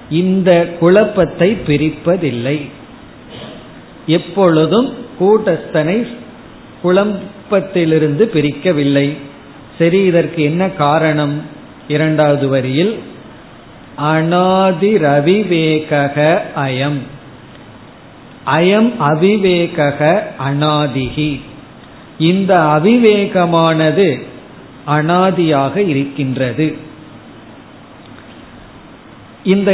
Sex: male